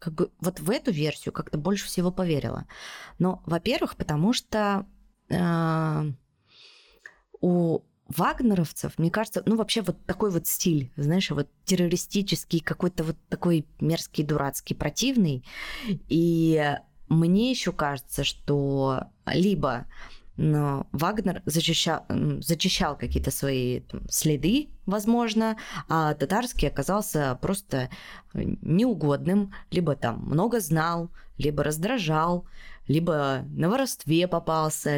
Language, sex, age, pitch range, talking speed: Russian, female, 20-39, 150-200 Hz, 110 wpm